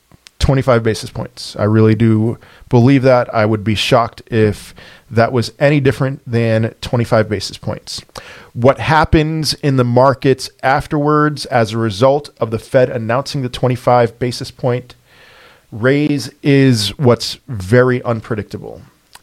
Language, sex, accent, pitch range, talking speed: English, male, American, 115-135 Hz, 135 wpm